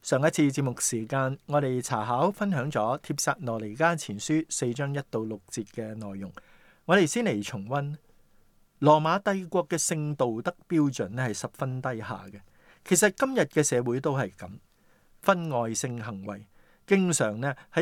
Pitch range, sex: 115-165 Hz, male